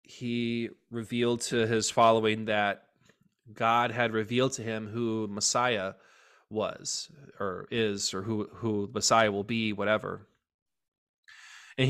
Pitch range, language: 110-130 Hz, English